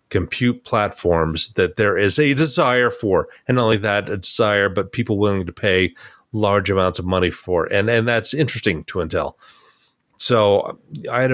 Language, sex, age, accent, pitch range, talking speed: English, male, 30-49, American, 90-110 Hz, 175 wpm